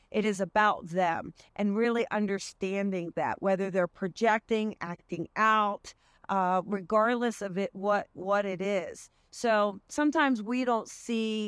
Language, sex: English, female